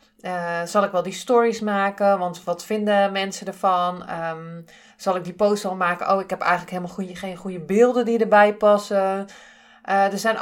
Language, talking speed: Dutch, 185 wpm